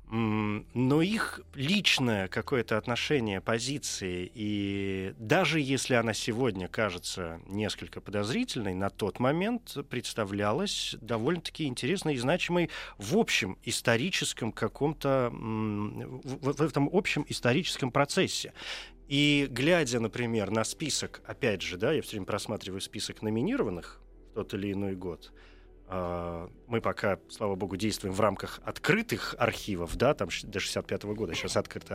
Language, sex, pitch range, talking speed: Russian, male, 95-140 Hz, 125 wpm